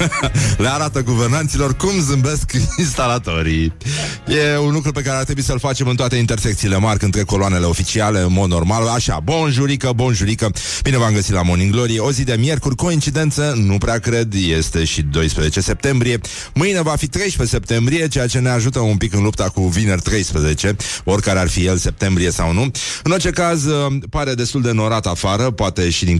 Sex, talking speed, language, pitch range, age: male, 185 wpm, Romanian, 90-130 Hz, 30-49